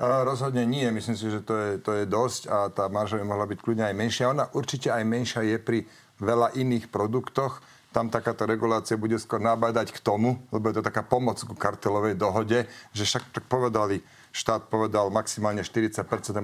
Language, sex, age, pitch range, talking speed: Slovak, male, 40-59, 100-115 Hz, 190 wpm